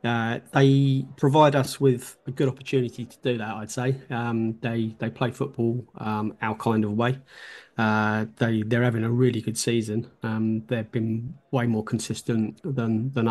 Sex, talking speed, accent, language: male, 175 wpm, British, English